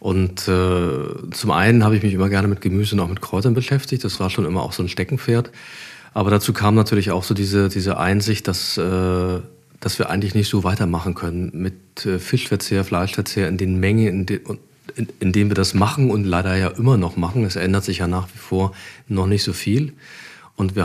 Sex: male